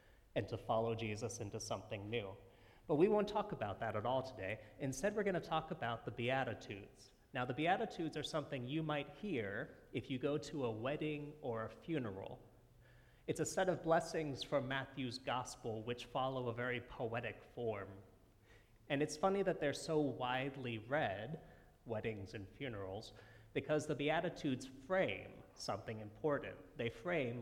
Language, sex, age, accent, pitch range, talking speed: English, male, 30-49, American, 110-145 Hz, 160 wpm